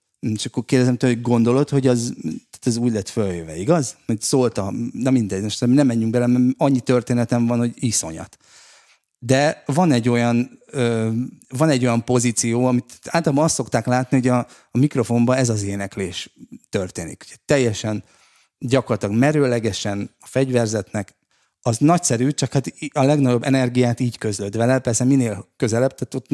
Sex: male